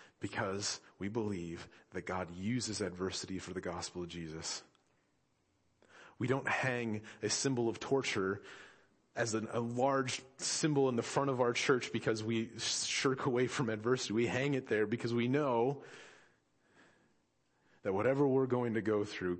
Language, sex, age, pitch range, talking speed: English, male, 30-49, 95-120 Hz, 150 wpm